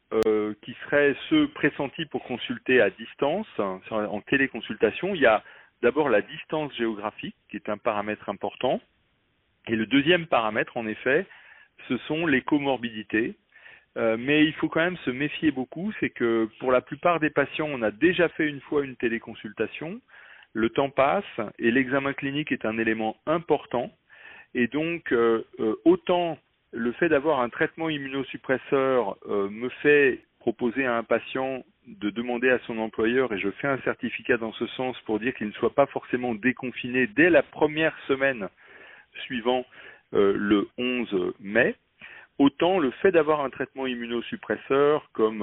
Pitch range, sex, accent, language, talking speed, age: 110-145 Hz, male, French, French, 160 wpm, 40-59